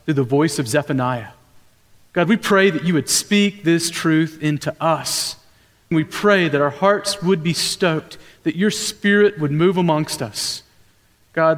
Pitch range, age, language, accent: 150-200 Hz, 40-59, Korean, American